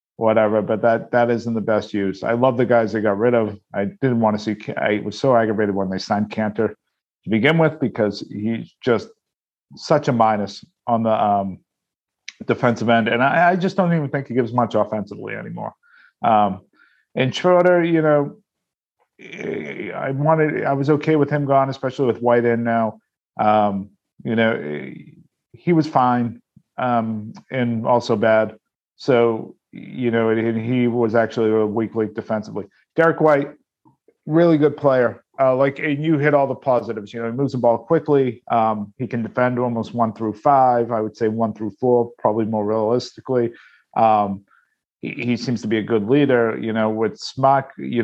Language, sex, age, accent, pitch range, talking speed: English, male, 40-59, American, 110-130 Hz, 180 wpm